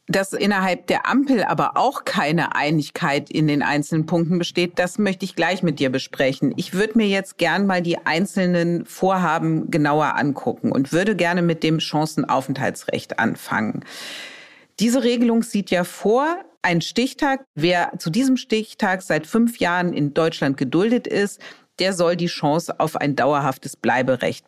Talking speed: 155 wpm